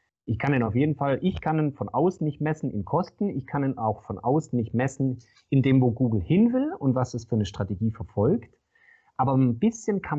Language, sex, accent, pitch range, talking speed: German, male, German, 115-150 Hz, 235 wpm